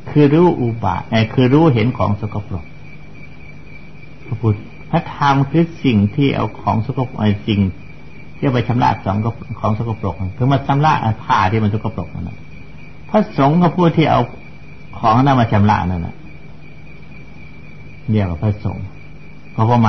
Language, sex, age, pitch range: Thai, male, 60-79, 105-140 Hz